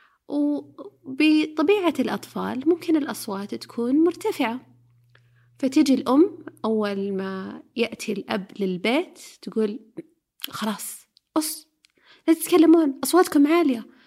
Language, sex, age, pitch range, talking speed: Arabic, female, 30-49, 220-305 Hz, 85 wpm